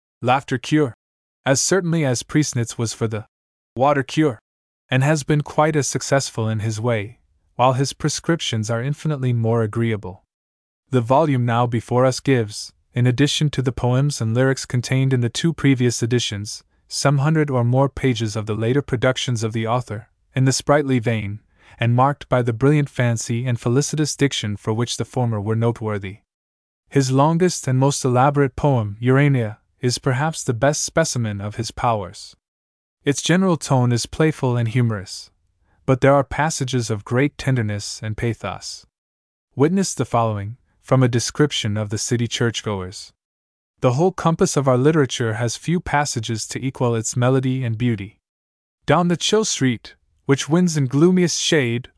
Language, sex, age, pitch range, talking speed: English, male, 20-39, 110-145 Hz, 165 wpm